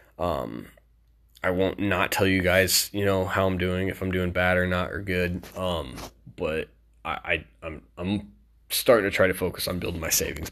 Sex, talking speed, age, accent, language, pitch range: male, 200 wpm, 20-39, American, English, 85-95 Hz